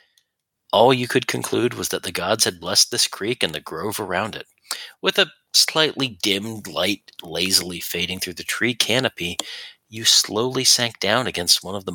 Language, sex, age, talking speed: English, male, 40-59, 180 wpm